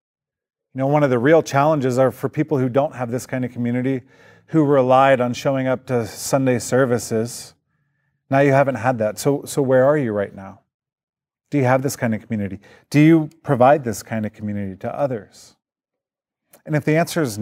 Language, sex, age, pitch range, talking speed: English, male, 40-59, 120-140 Hz, 200 wpm